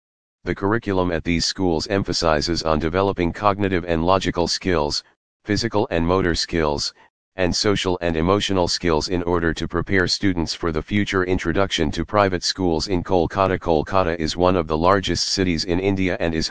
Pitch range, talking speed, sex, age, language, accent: 85-100 Hz, 165 wpm, male, 40-59, English, American